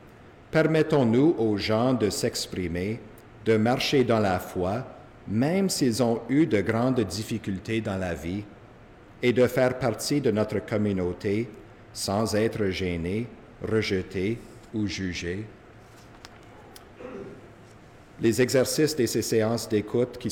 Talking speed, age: 120 wpm, 50-69